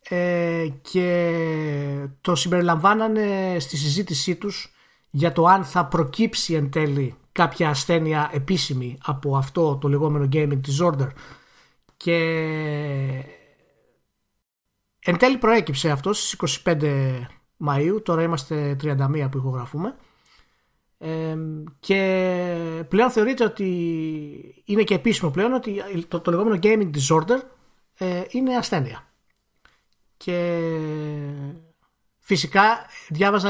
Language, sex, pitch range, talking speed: Greek, male, 140-185 Hz, 95 wpm